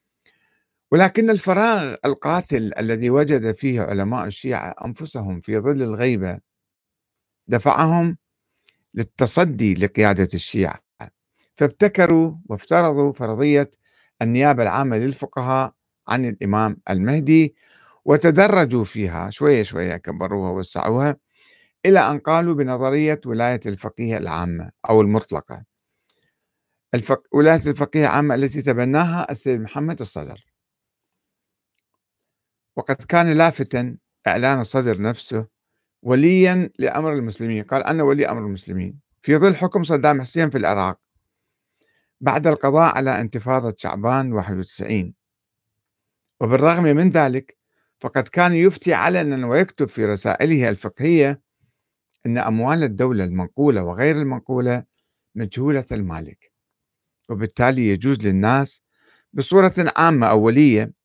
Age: 50-69